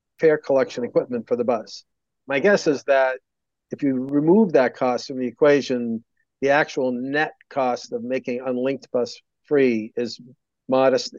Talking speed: 155 wpm